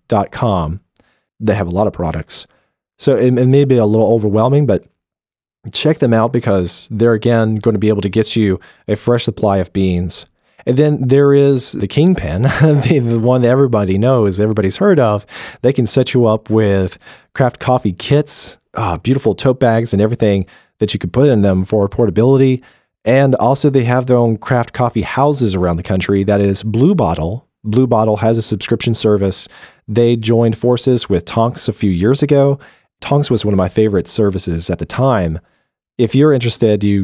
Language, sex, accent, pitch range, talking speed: English, male, American, 100-125 Hz, 190 wpm